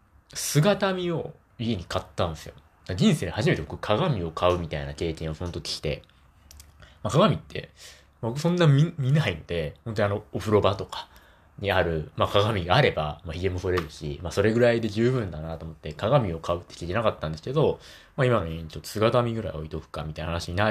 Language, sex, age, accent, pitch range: Japanese, male, 20-39, native, 80-125 Hz